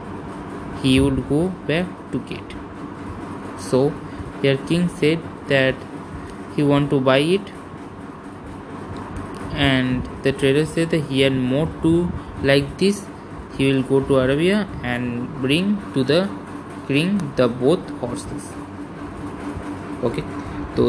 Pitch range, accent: 100-160 Hz, native